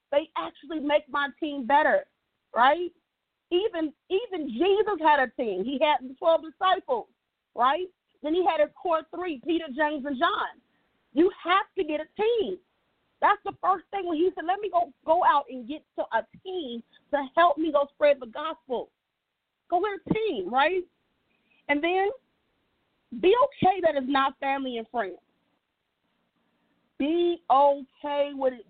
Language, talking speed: English, 165 wpm